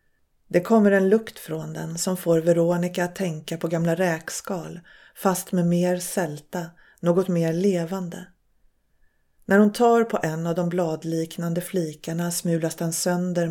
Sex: female